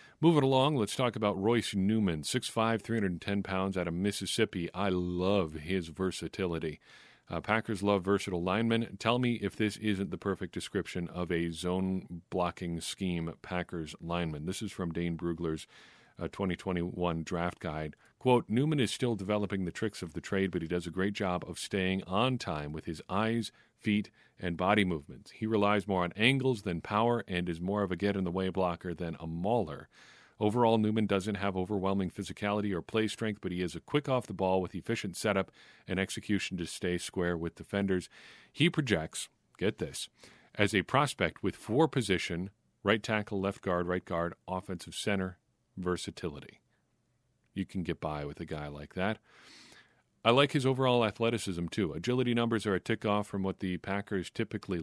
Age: 40-59